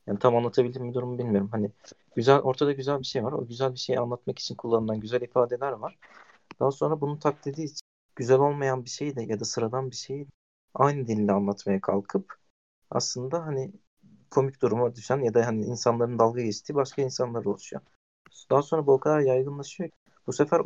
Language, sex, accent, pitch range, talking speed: Turkish, male, native, 115-135 Hz, 190 wpm